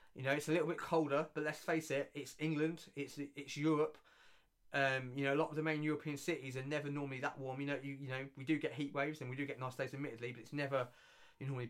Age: 20-39